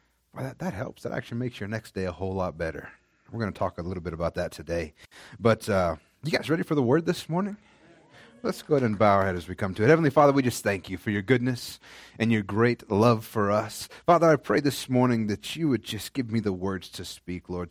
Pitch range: 95-140 Hz